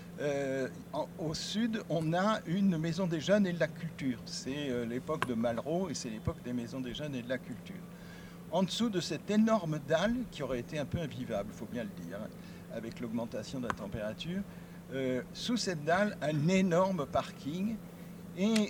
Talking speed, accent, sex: 195 wpm, French, male